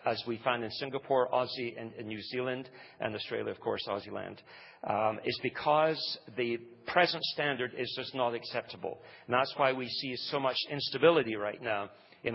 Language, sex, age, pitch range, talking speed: English, male, 40-59, 120-135 Hz, 175 wpm